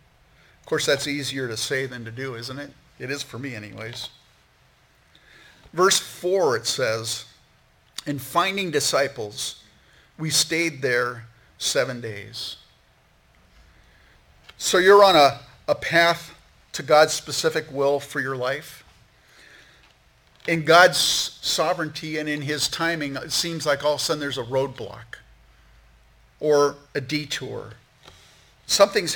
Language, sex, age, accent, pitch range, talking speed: English, male, 50-69, American, 130-155 Hz, 130 wpm